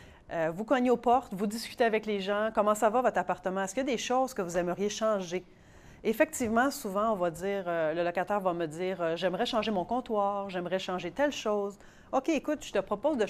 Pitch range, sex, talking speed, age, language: 180-225 Hz, female, 230 wpm, 30-49, French